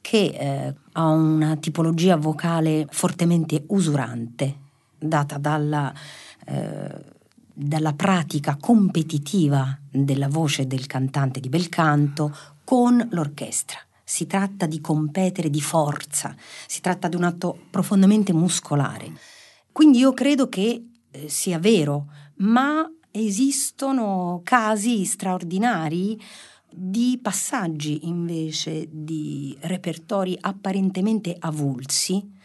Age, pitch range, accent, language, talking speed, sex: 50-69, 155-225 Hz, native, Italian, 100 wpm, female